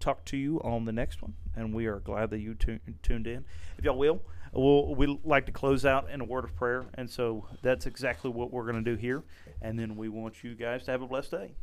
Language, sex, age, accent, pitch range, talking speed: English, male, 40-59, American, 115-135 Hz, 265 wpm